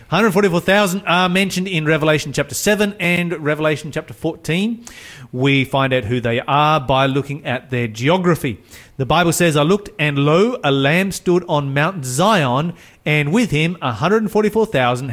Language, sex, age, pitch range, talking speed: English, male, 30-49, 125-175 Hz, 155 wpm